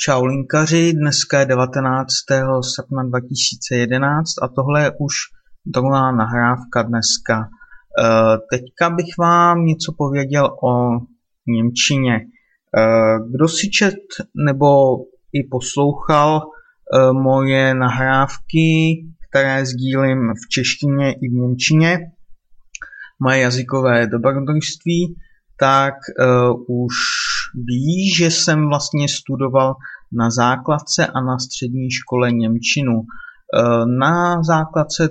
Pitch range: 125-155 Hz